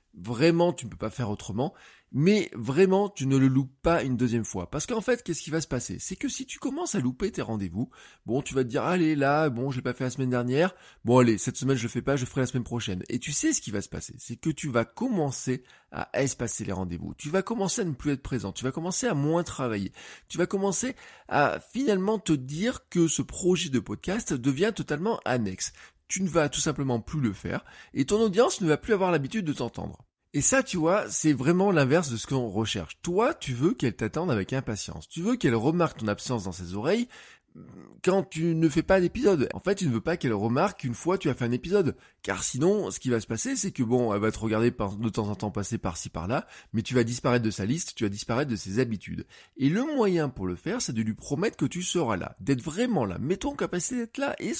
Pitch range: 115-185 Hz